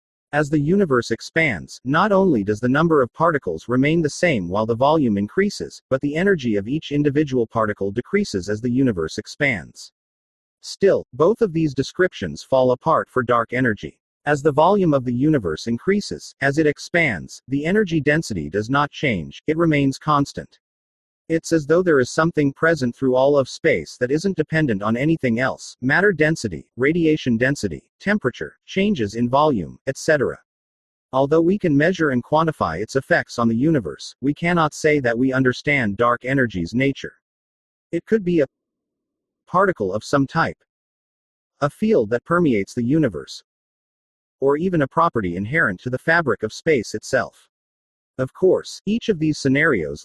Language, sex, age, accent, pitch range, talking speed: English, male, 40-59, American, 115-160 Hz, 165 wpm